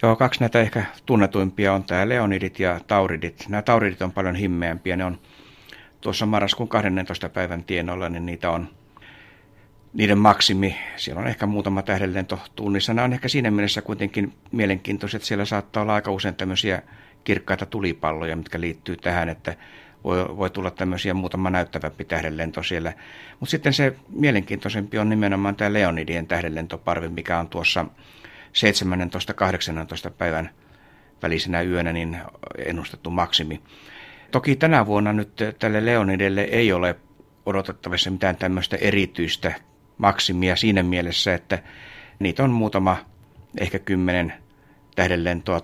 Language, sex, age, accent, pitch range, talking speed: Finnish, male, 60-79, native, 90-105 Hz, 130 wpm